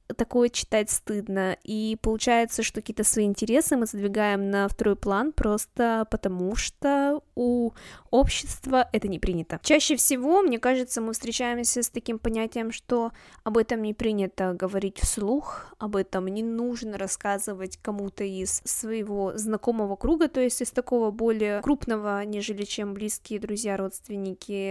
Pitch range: 205-240 Hz